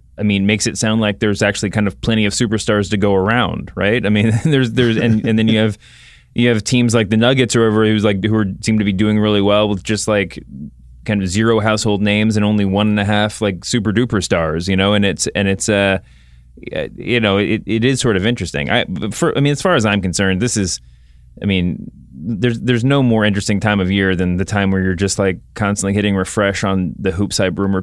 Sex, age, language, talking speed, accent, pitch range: male, 20-39, English, 245 wpm, American, 95-110 Hz